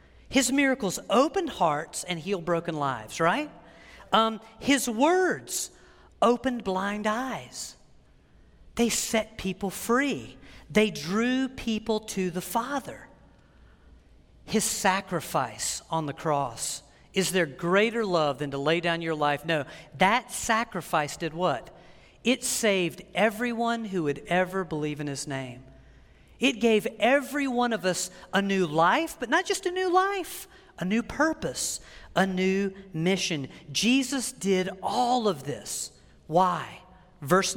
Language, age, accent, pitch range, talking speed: English, 40-59, American, 160-225 Hz, 135 wpm